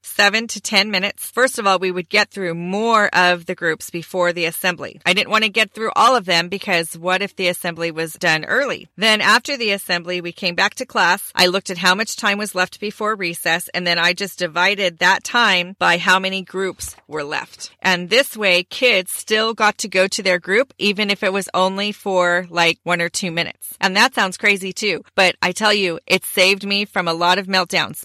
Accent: American